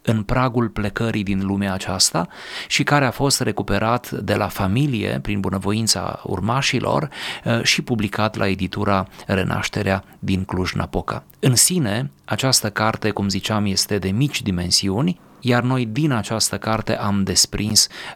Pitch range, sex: 100-130 Hz, male